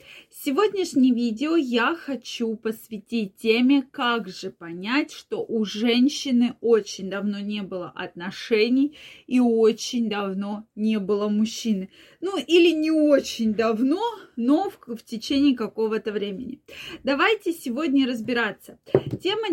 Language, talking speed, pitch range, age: Russian, 115 wpm, 220-270 Hz, 20-39